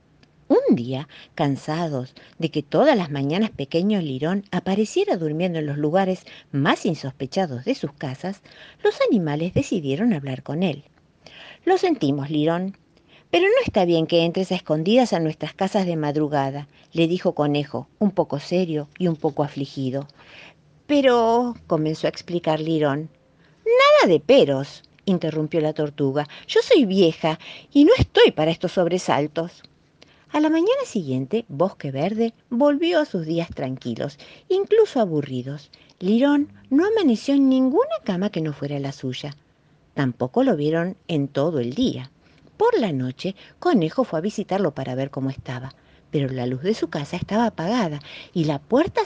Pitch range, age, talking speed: 145-210 Hz, 50-69, 155 wpm